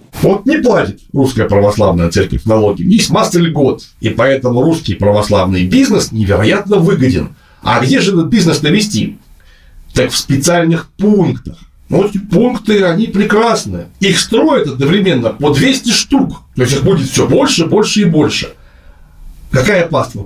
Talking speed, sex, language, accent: 145 wpm, male, Russian, native